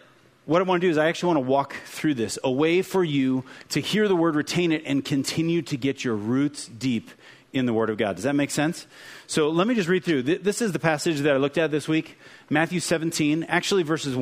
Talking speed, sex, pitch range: 250 wpm, male, 130-165 Hz